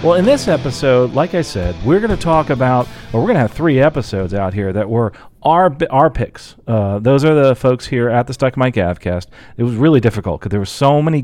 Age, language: 40-59, English